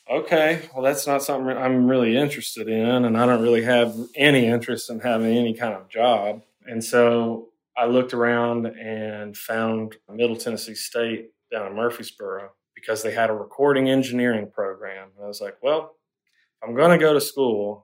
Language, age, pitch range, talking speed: English, 20-39, 110-120 Hz, 180 wpm